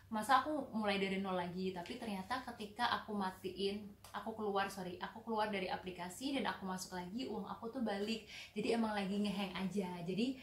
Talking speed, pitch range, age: 185 wpm, 195-235 Hz, 20-39